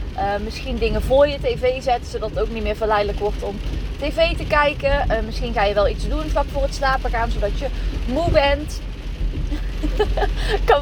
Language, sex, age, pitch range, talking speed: Dutch, female, 20-39, 225-290 Hz, 195 wpm